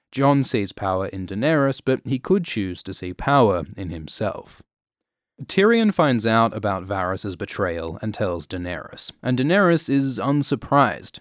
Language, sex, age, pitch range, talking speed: English, male, 30-49, 95-130 Hz, 145 wpm